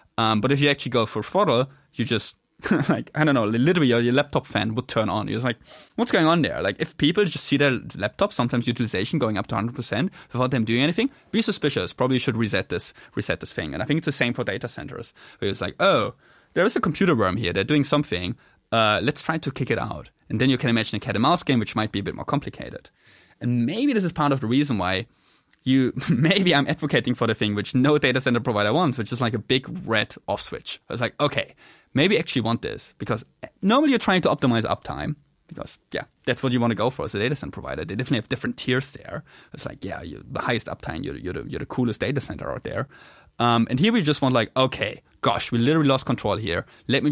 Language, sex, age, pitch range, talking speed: English, male, 20-39, 110-145 Hz, 255 wpm